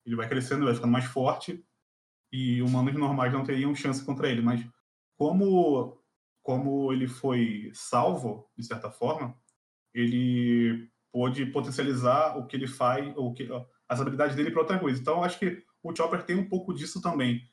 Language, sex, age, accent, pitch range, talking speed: Portuguese, male, 20-39, Brazilian, 120-145 Hz, 170 wpm